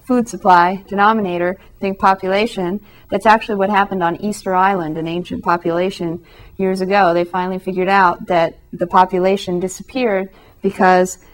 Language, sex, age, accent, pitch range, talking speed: English, female, 30-49, American, 175-220 Hz, 140 wpm